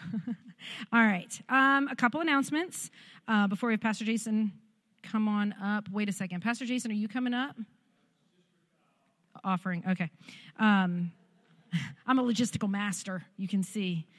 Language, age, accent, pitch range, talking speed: English, 40-59, American, 185-230 Hz, 145 wpm